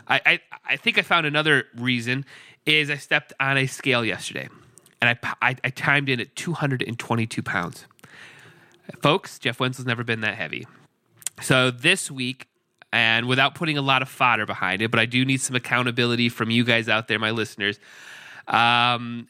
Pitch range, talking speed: 115-140 Hz, 175 wpm